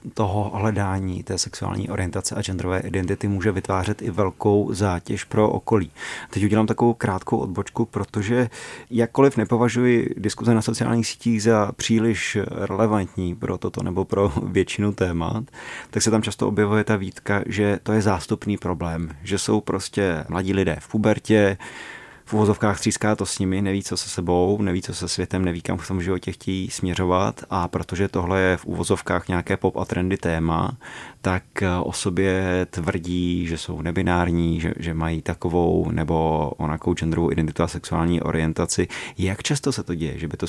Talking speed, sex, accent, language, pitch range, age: 165 wpm, male, native, Czech, 85-105 Hz, 30-49